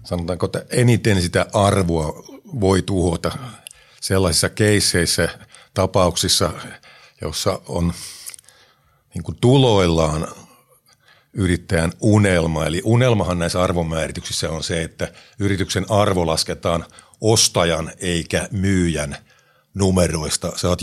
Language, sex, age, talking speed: Finnish, male, 50-69, 90 wpm